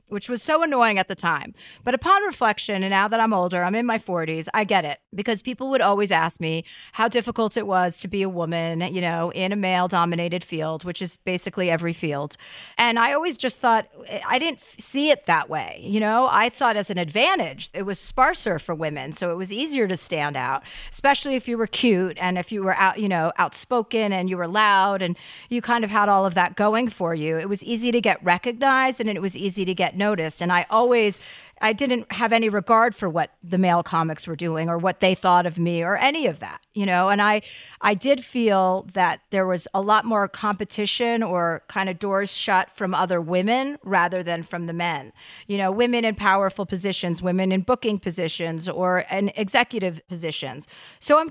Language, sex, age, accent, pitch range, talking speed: English, female, 40-59, American, 175-225 Hz, 220 wpm